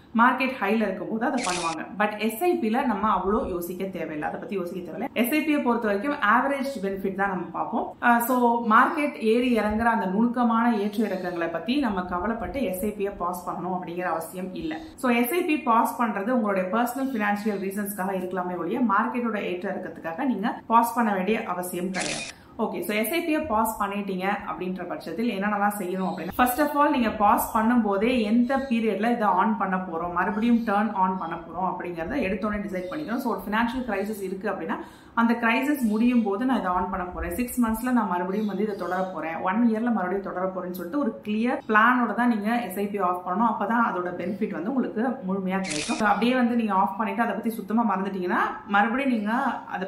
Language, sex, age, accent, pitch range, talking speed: Tamil, female, 30-49, native, 185-240 Hz, 185 wpm